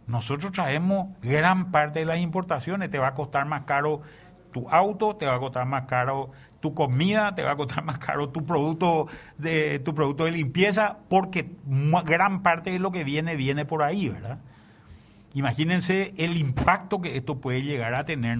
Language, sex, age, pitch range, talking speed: Spanish, male, 50-69, 125-170 Hz, 185 wpm